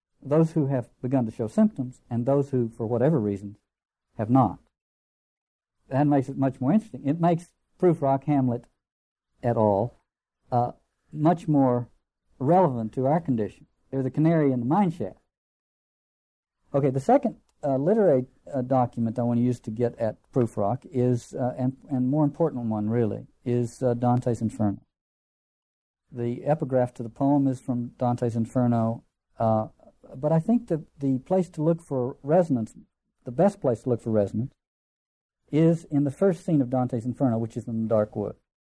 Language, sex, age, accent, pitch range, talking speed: English, male, 50-69, American, 115-150 Hz, 170 wpm